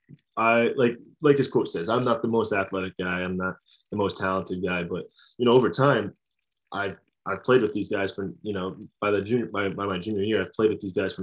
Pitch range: 95-105 Hz